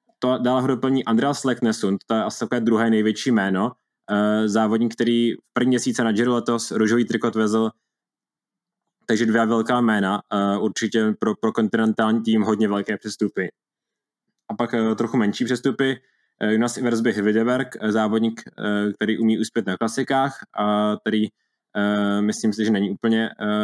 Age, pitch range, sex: 20-39, 110-120 Hz, male